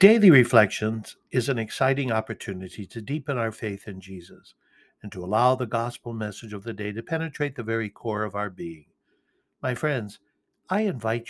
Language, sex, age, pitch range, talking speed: English, male, 60-79, 100-130 Hz, 175 wpm